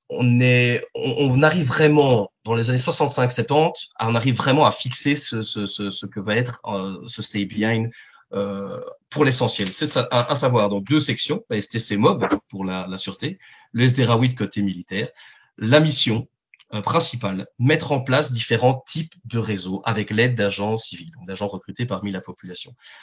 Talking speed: 180 wpm